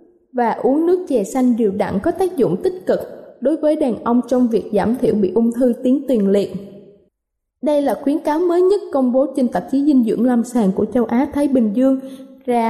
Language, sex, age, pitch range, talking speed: Vietnamese, female, 20-39, 225-285 Hz, 225 wpm